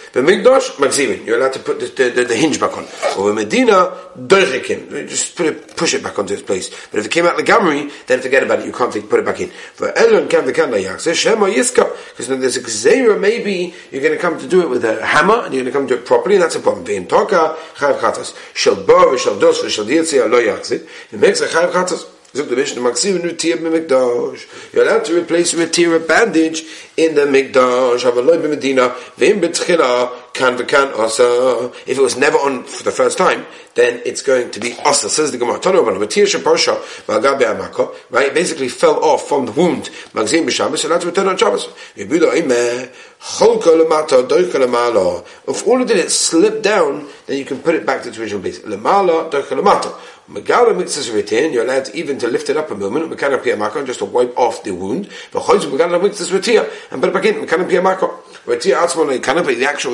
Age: 40-59